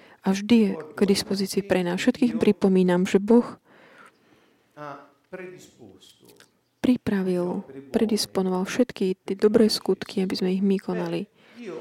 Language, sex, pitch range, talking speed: Slovak, female, 190-225 Hz, 110 wpm